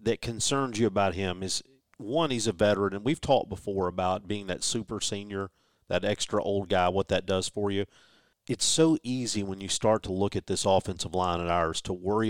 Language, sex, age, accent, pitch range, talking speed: English, male, 40-59, American, 95-130 Hz, 215 wpm